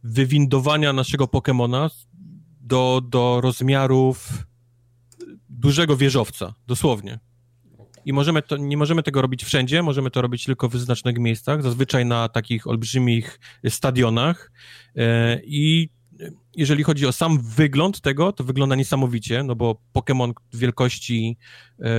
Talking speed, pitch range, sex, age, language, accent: 115 wpm, 120-140 Hz, male, 30-49, Polish, native